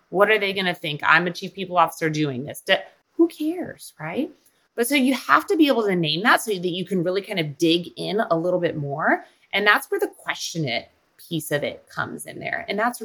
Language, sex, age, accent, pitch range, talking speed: English, female, 30-49, American, 150-220 Hz, 250 wpm